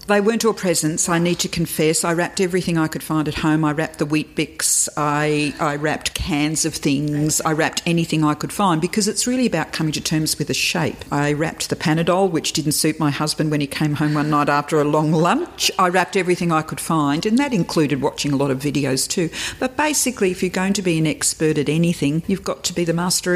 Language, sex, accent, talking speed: English, female, Australian, 240 wpm